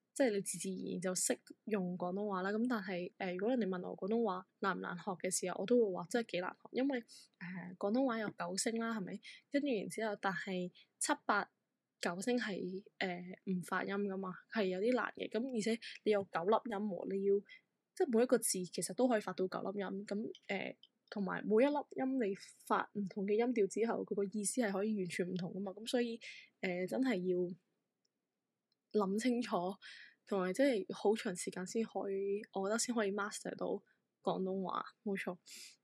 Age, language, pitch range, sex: 10-29, English, 190-230 Hz, female